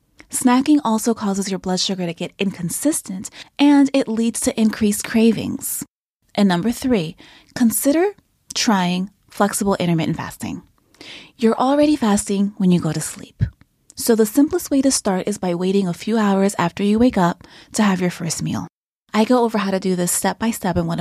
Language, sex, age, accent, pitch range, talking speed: English, female, 20-39, American, 175-235 Hz, 185 wpm